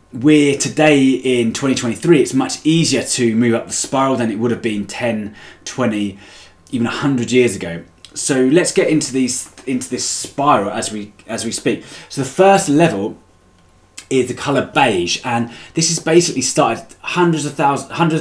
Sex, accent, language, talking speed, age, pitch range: male, British, English, 175 wpm, 20-39, 105-135 Hz